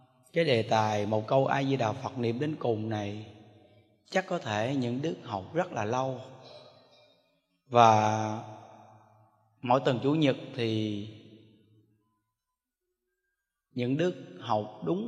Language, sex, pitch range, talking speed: Vietnamese, male, 110-155 Hz, 125 wpm